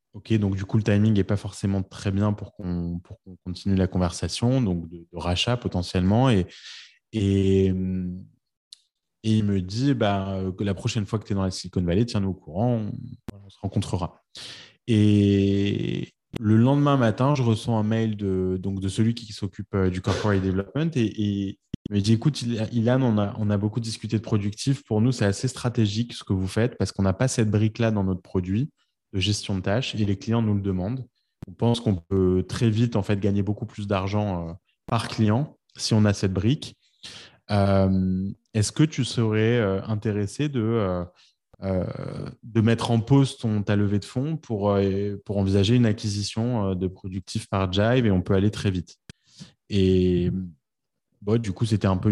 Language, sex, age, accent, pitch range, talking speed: French, male, 20-39, French, 95-115 Hz, 195 wpm